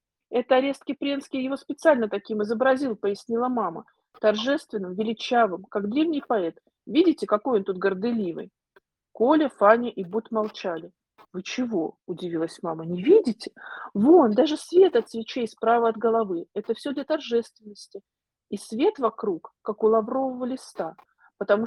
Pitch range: 200-285 Hz